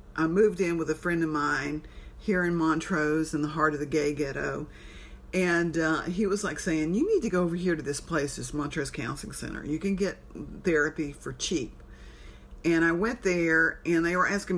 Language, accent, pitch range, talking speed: English, American, 155-185 Hz, 210 wpm